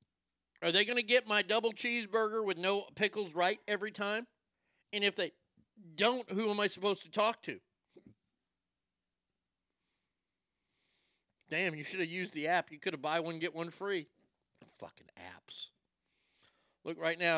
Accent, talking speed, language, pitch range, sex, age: American, 155 wpm, English, 160-205 Hz, male, 50-69